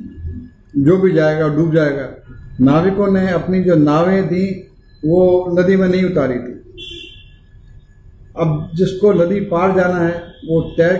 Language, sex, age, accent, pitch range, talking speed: Hindi, male, 50-69, native, 140-185 Hz, 140 wpm